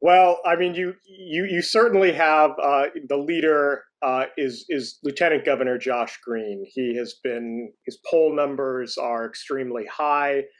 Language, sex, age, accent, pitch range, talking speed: English, male, 30-49, American, 120-165 Hz, 155 wpm